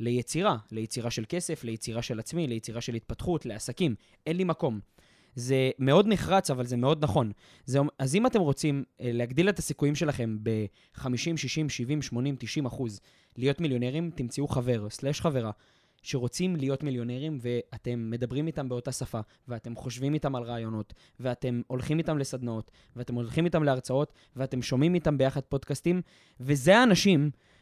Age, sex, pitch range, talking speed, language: 20-39, male, 120-160 Hz, 150 wpm, Hebrew